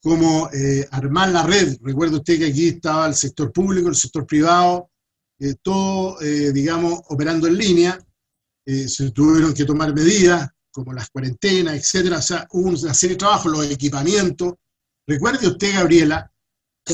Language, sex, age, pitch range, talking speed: Spanish, male, 50-69, 145-185 Hz, 155 wpm